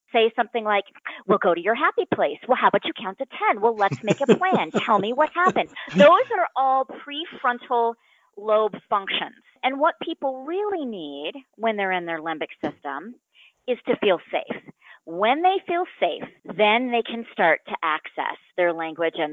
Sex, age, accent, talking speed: female, 40-59, American, 185 wpm